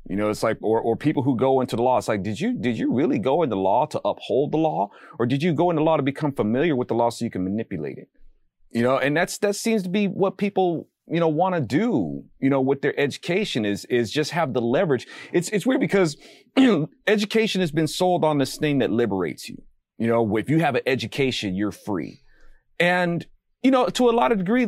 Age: 30-49